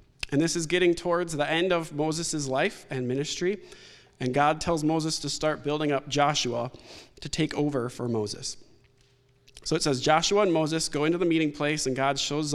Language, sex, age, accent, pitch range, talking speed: English, male, 20-39, American, 135-175 Hz, 190 wpm